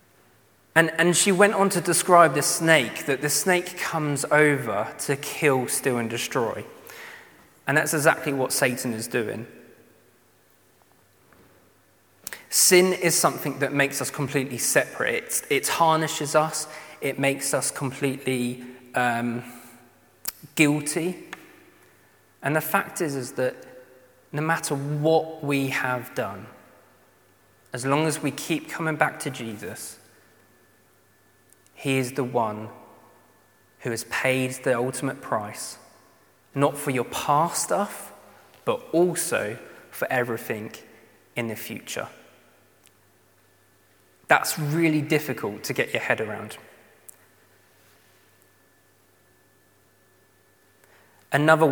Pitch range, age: 110-150 Hz, 20-39